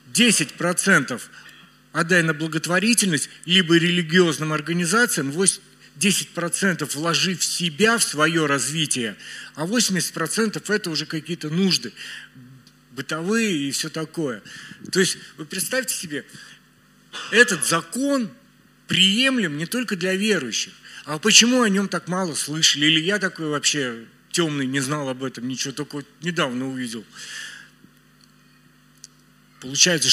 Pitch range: 140-180 Hz